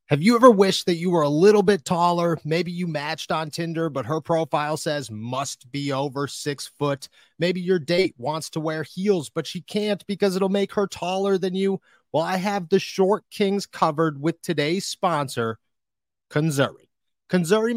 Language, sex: English, male